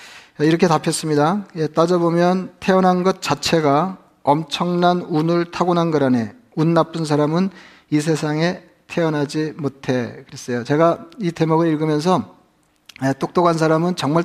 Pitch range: 150-170 Hz